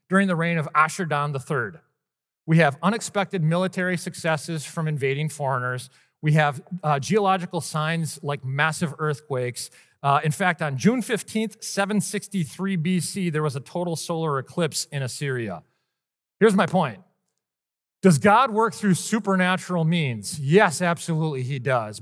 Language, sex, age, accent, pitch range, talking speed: English, male, 40-59, American, 145-195 Hz, 140 wpm